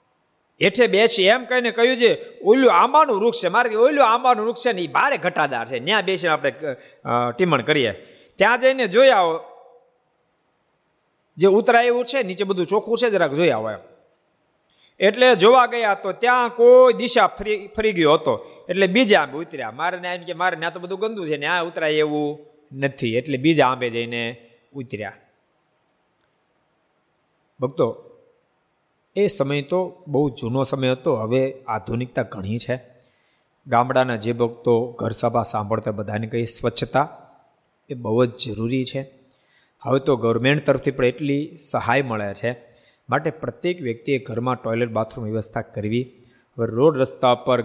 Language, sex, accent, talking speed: Gujarati, male, native, 100 wpm